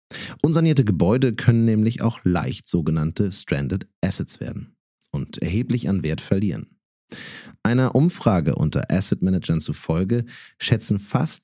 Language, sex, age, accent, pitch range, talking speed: German, male, 30-49, German, 90-120 Hz, 115 wpm